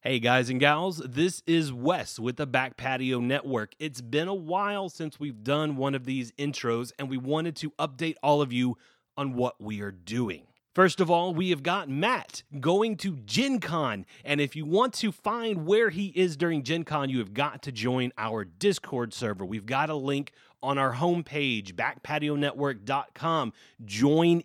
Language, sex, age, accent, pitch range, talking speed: English, male, 30-49, American, 125-165 Hz, 185 wpm